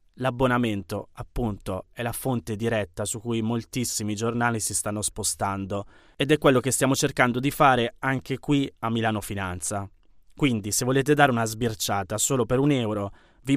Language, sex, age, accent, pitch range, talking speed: Italian, male, 20-39, native, 105-135 Hz, 165 wpm